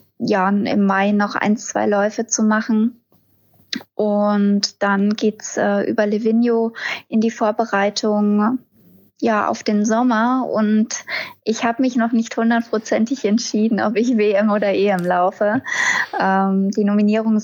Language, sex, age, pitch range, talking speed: German, female, 20-39, 200-225 Hz, 140 wpm